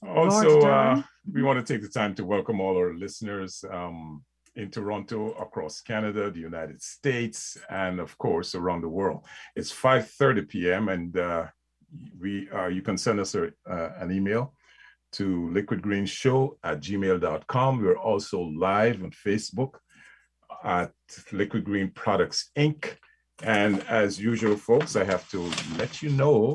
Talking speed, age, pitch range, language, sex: 150 wpm, 50-69, 90-115 Hz, English, male